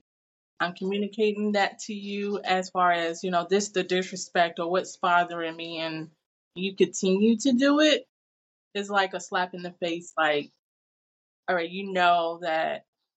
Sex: female